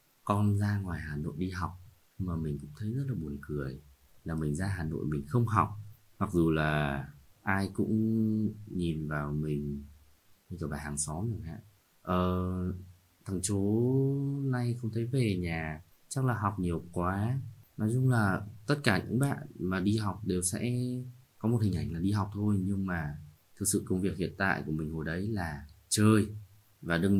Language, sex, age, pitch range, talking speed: Vietnamese, male, 20-39, 80-110 Hz, 190 wpm